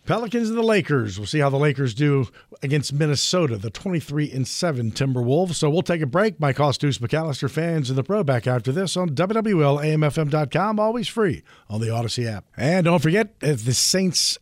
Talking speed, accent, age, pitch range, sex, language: 185 wpm, American, 50-69, 135-190 Hz, male, English